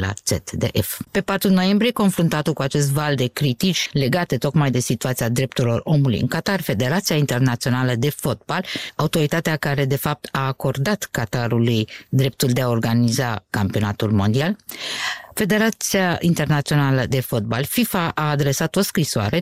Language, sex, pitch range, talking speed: Romanian, female, 125-180 Hz, 140 wpm